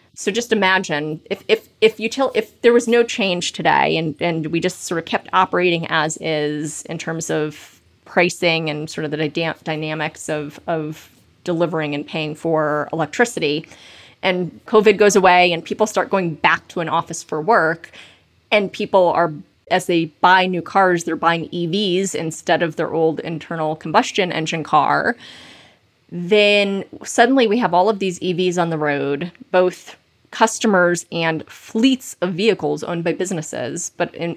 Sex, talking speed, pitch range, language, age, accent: female, 165 wpm, 160-200 Hz, English, 30-49, American